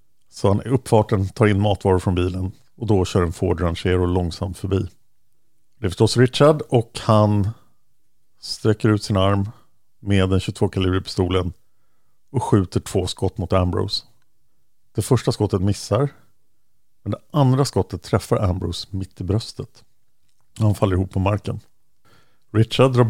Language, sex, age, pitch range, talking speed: Swedish, male, 50-69, 95-120 Hz, 150 wpm